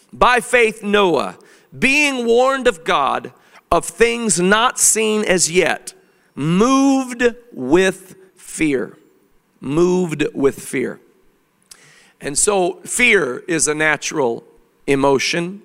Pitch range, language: 150-200 Hz, English